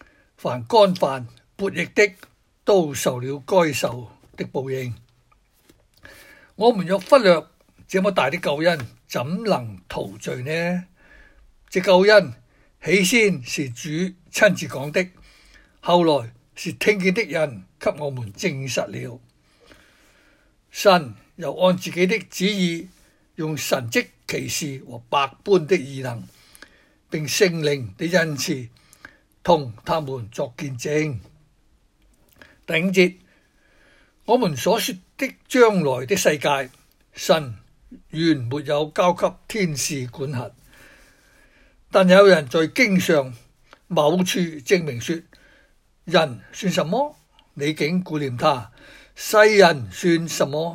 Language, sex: Chinese, male